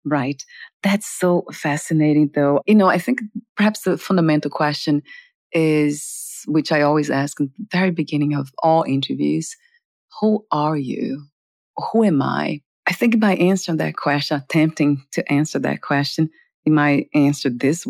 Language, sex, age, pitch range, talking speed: English, female, 40-59, 145-190 Hz, 155 wpm